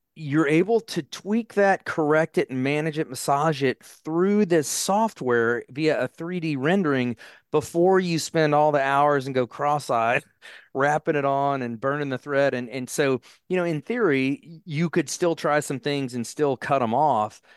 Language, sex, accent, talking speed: English, male, American, 180 wpm